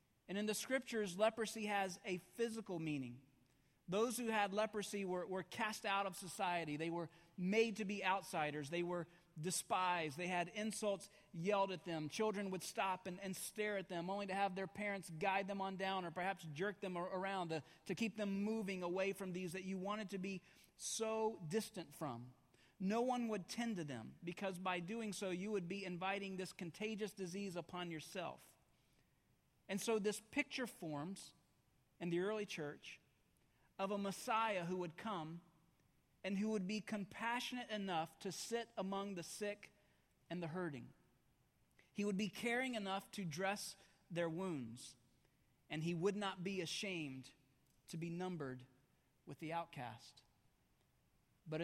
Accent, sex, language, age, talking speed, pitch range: American, male, English, 40-59, 165 wpm, 165-205 Hz